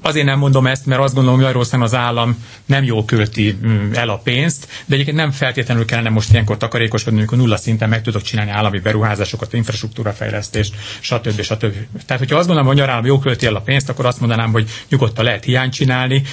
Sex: male